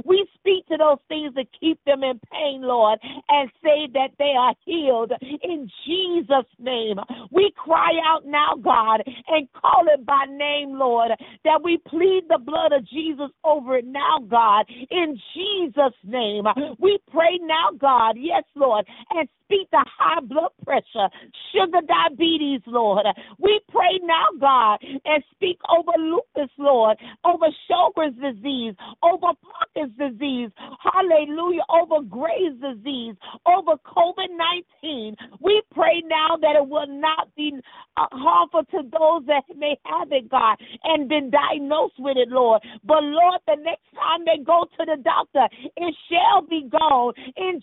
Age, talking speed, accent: 50-69, 150 wpm, American